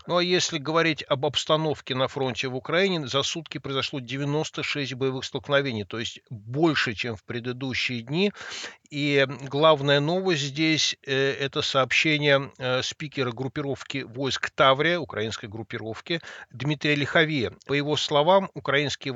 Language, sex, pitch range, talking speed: Russian, male, 130-150 Hz, 130 wpm